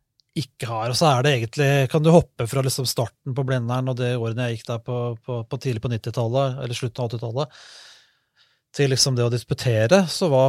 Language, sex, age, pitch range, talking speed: English, male, 30-49, 125-155 Hz, 205 wpm